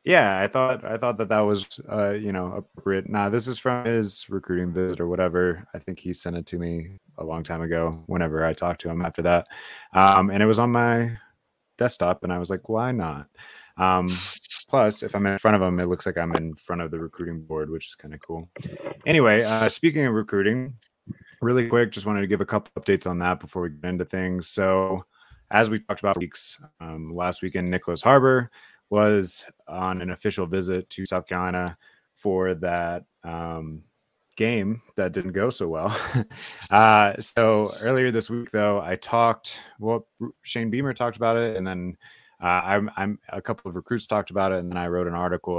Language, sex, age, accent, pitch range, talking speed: English, male, 20-39, American, 90-105 Hz, 210 wpm